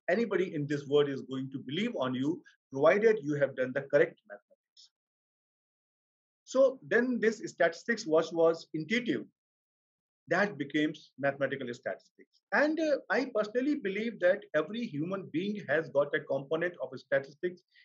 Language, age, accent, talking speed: English, 40-59, Indian, 145 wpm